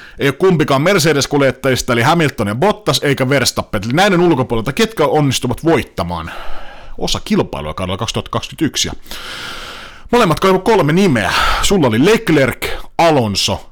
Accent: native